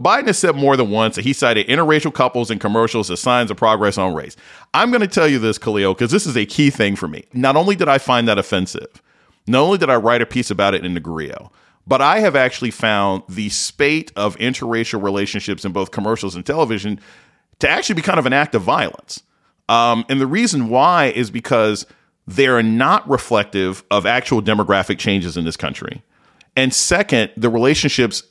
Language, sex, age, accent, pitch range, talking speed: English, male, 40-59, American, 100-125 Hz, 210 wpm